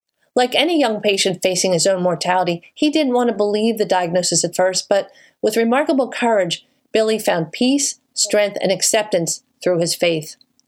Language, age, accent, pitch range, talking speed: English, 40-59, American, 180-255 Hz, 170 wpm